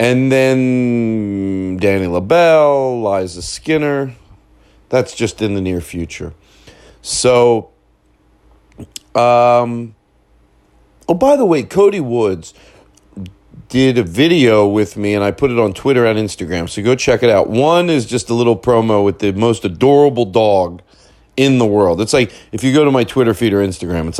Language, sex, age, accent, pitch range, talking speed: English, male, 40-59, American, 95-130 Hz, 160 wpm